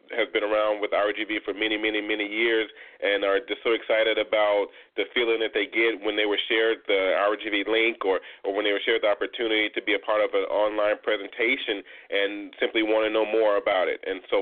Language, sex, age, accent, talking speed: English, male, 30-49, American, 235 wpm